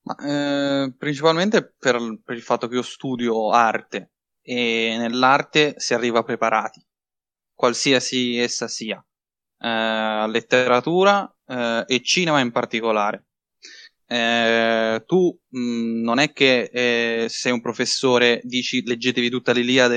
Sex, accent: male, native